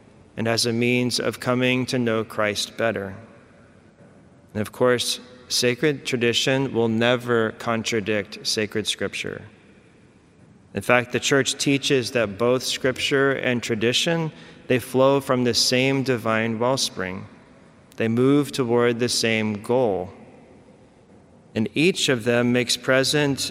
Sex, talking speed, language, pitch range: male, 125 wpm, English, 110-125 Hz